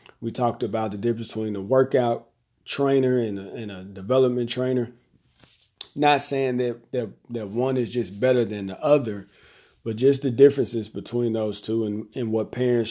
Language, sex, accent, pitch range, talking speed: English, male, American, 110-130 Hz, 175 wpm